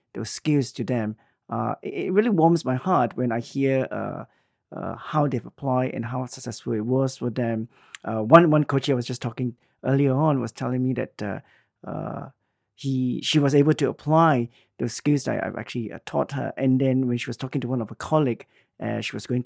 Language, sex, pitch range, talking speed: English, male, 115-140 Hz, 215 wpm